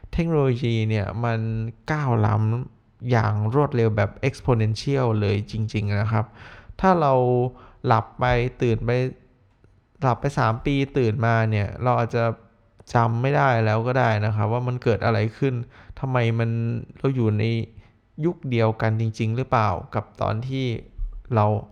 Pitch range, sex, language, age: 105-125 Hz, male, Thai, 20-39